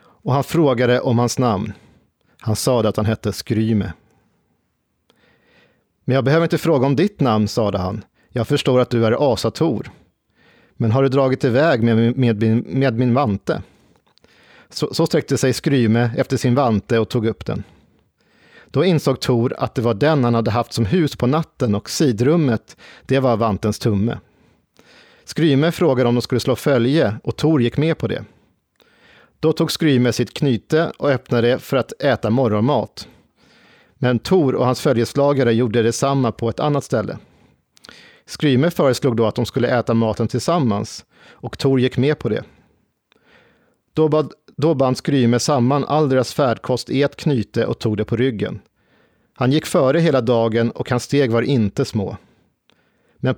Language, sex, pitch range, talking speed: Swedish, male, 115-140 Hz, 170 wpm